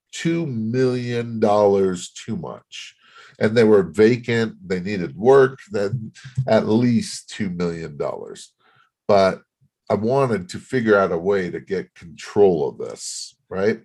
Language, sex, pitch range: English, male, 95-130 Hz